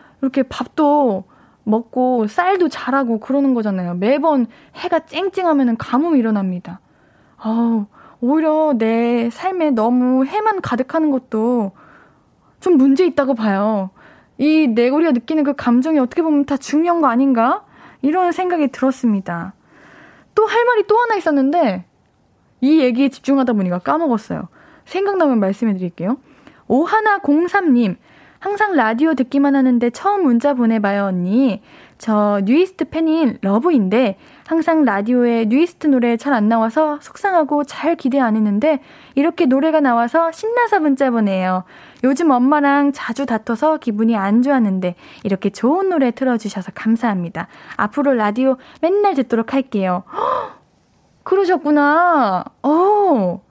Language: Korean